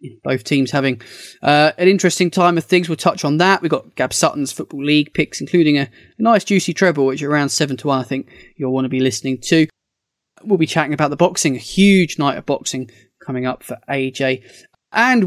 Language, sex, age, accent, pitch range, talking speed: English, male, 20-39, British, 130-170 Hz, 210 wpm